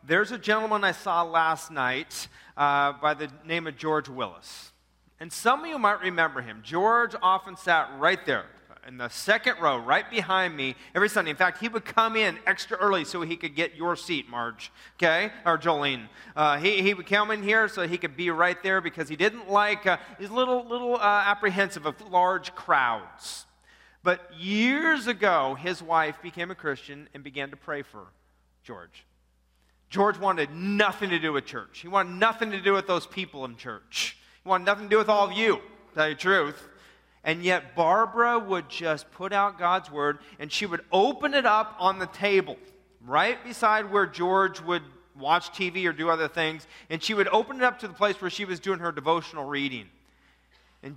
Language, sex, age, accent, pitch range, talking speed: English, male, 40-59, American, 155-205 Hz, 200 wpm